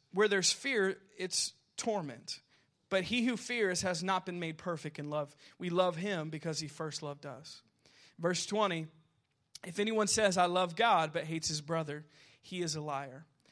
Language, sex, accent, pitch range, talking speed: English, male, American, 145-185 Hz, 180 wpm